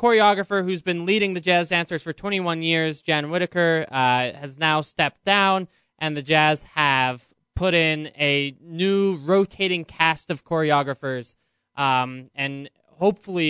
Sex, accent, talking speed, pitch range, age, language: male, American, 140 wpm, 140-185 Hz, 20-39, English